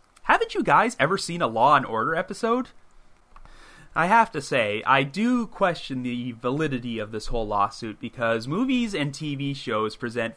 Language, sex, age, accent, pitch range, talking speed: English, male, 30-49, American, 120-195 Hz, 160 wpm